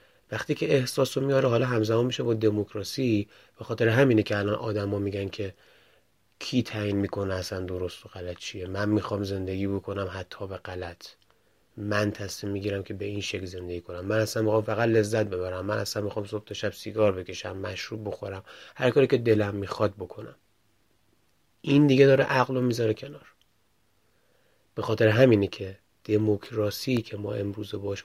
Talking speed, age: 165 wpm, 30-49